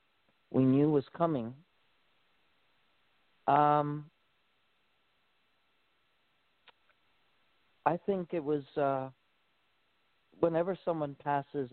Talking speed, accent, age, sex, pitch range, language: 65 wpm, American, 50-69, male, 125-150 Hz, English